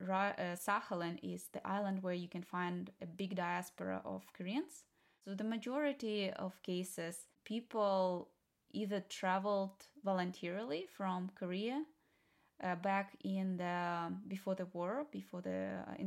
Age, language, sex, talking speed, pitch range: 20-39, English, female, 125 wpm, 180-200 Hz